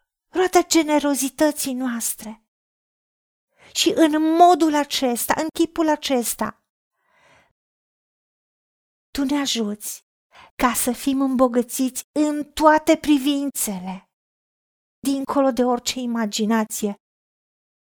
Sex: female